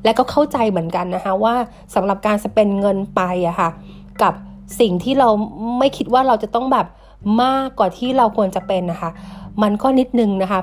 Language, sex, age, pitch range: Thai, female, 30-49, 185-240 Hz